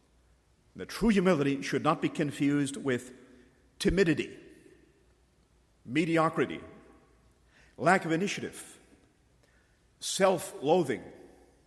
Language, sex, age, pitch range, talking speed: English, male, 50-69, 130-175 Hz, 70 wpm